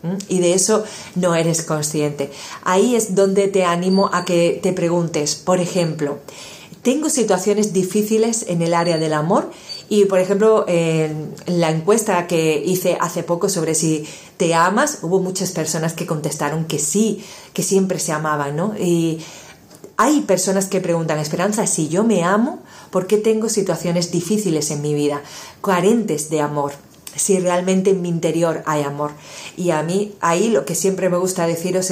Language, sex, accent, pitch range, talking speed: Spanish, female, Spanish, 165-195 Hz, 165 wpm